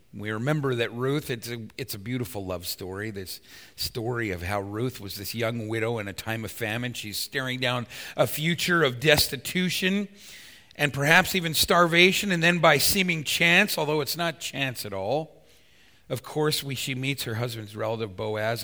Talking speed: 180 wpm